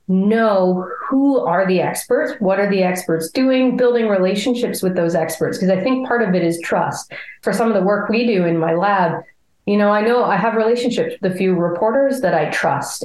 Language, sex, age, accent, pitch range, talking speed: English, female, 30-49, American, 175-225 Hz, 215 wpm